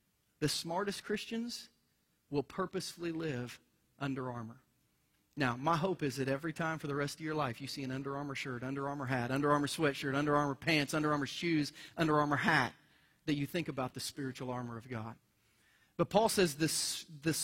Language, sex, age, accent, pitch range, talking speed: English, male, 40-59, American, 135-170 Hz, 190 wpm